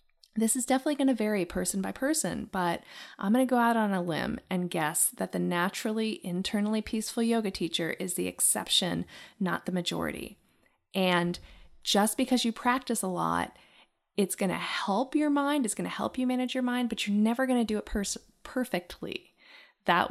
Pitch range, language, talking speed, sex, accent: 185-230 Hz, English, 190 wpm, female, American